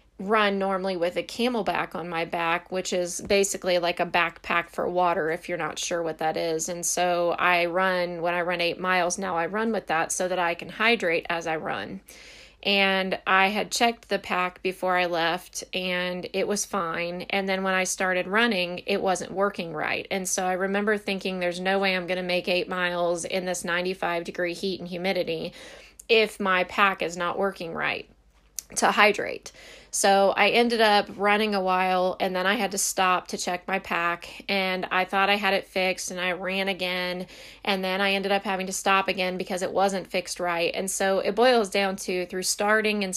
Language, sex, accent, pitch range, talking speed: English, female, American, 175-195 Hz, 205 wpm